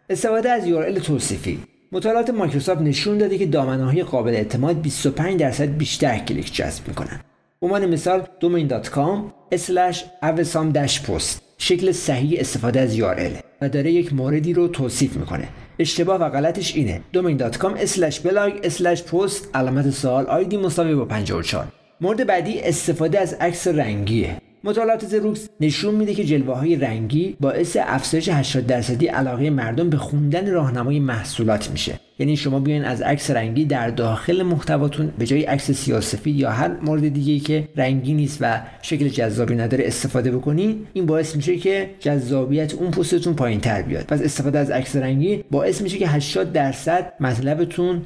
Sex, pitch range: male, 130-175 Hz